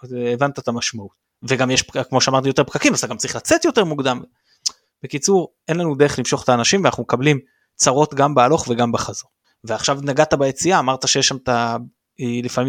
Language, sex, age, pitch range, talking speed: Hebrew, male, 20-39, 125-190 Hz, 190 wpm